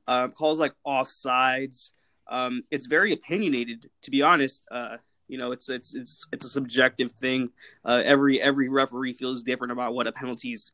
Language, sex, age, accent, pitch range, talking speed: English, male, 20-39, American, 125-150 Hz, 175 wpm